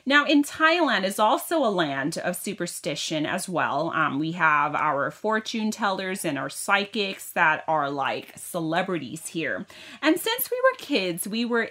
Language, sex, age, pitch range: Thai, female, 30-49, 180-255 Hz